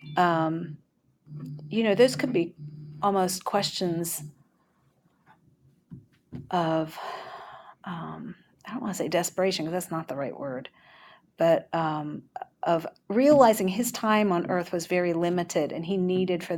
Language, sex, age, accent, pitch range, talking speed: English, female, 40-59, American, 160-190 Hz, 135 wpm